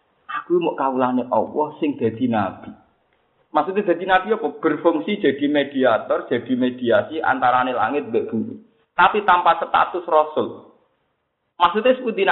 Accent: native